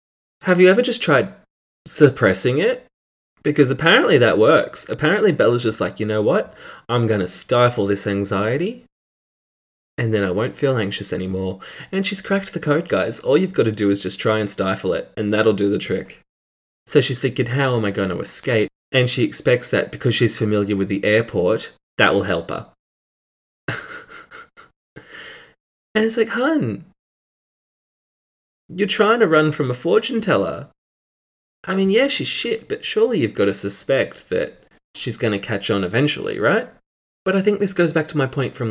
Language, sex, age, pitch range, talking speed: English, male, 20-39, 105-165 Hz, 180 wpm